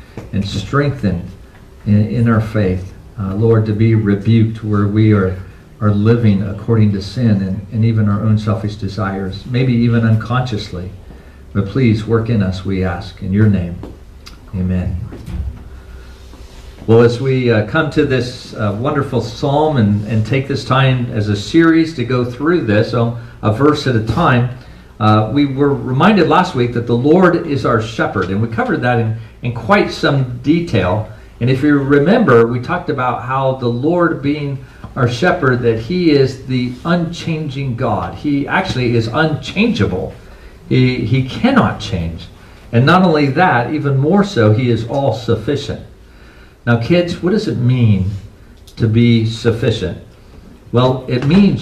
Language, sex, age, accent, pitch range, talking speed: English, male, 50-69, American, 105-135 Hz, 160 wpm